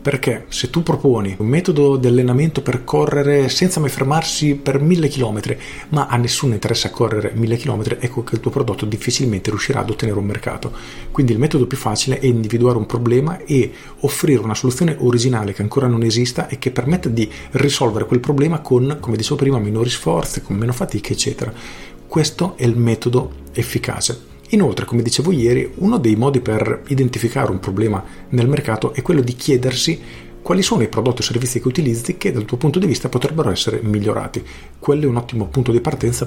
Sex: male